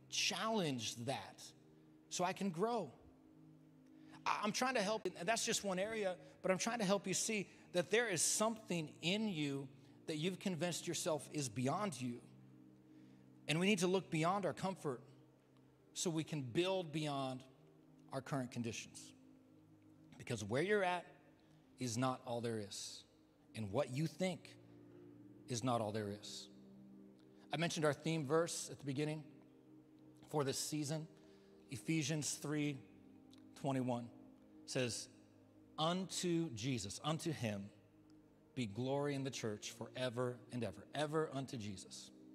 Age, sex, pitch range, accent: 40-59, male, 115-160 Hz, American